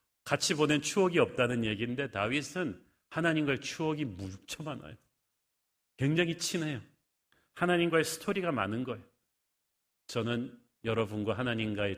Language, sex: Korean, male